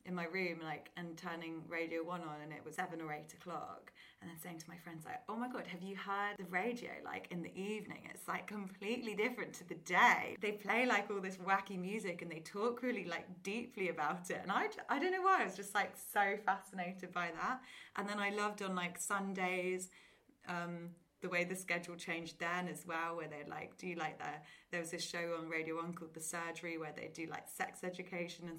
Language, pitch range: English, 170-210 Hz